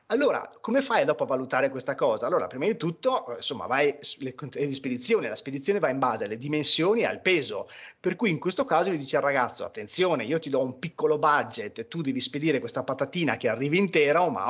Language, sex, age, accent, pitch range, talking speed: Italian, male, 30-49, native, 145-230 Hz, 215 wpm